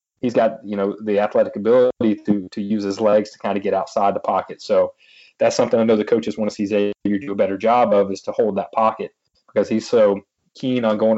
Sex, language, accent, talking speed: male, English, American, 245 wpm